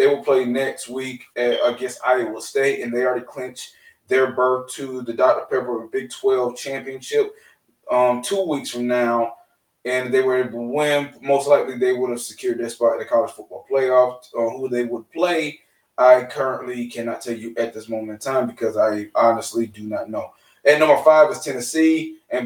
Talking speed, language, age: 200 wpm, English, 20-39